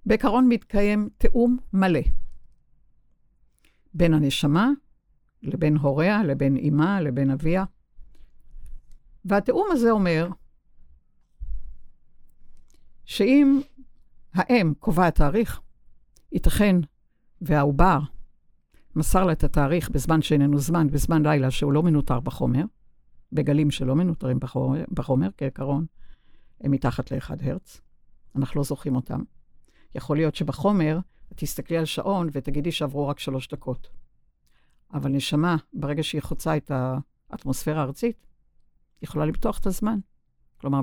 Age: 60-79